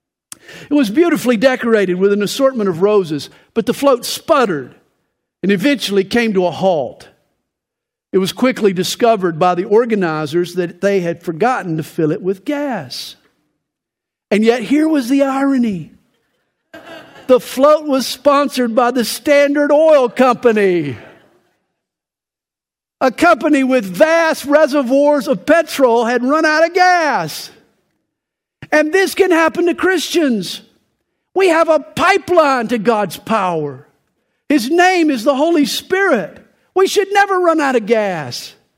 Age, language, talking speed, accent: 50-69, English, 135 wpm, American